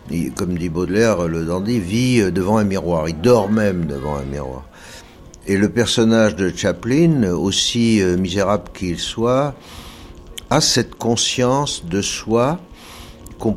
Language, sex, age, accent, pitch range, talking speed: French, male, 60-79, French, 80-110 Hz, 135 wpm